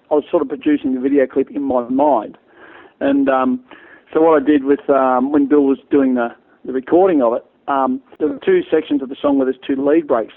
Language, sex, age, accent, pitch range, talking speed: English, male, 50-69, Australian, 135-165 Hz, 235 wpm